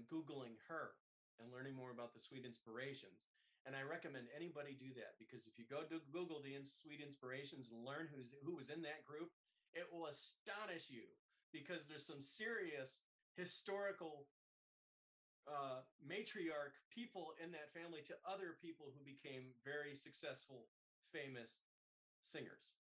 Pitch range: 130-170 Hz